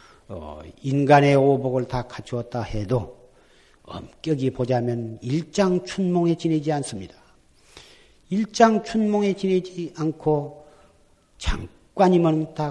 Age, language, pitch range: 40-59, Korean, 115-175 Hz